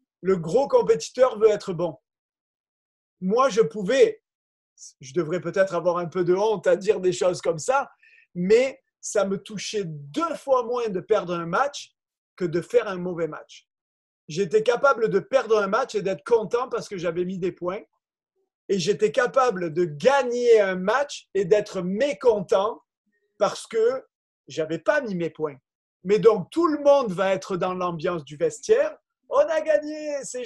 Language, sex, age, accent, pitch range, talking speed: French, male, 30-49, French, 180-270 Hz, 170 wpm